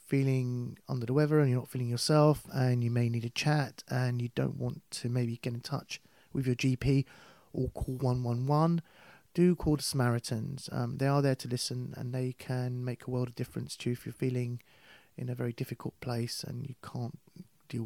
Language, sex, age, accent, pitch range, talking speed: English, male, 30-49, British, 120-140 Hz, 210 wpm